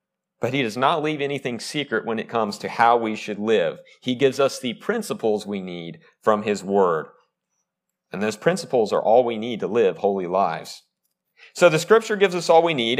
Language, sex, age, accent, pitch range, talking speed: English, male, 40-59, American, 110-170 Hz, 205 wpm